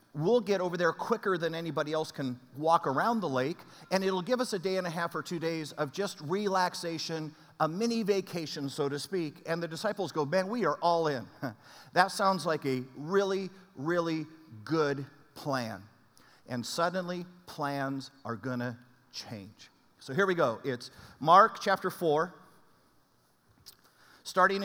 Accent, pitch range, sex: American, 150-200 Hz, male